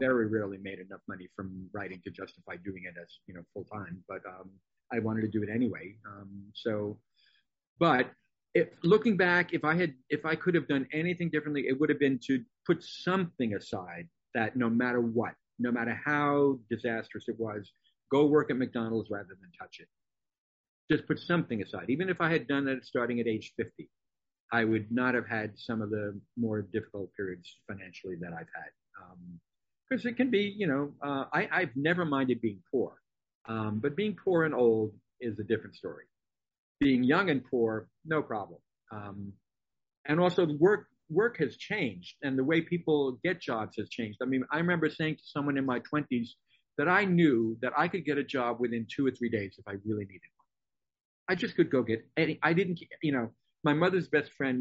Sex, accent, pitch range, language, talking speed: male, American, 110-150 Hz, English, 200 wpm